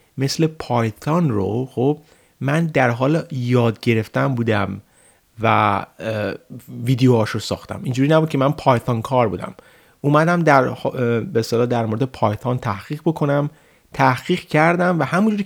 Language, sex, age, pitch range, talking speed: Persian, male, 30-49, 120-150 Hz, 130 wpm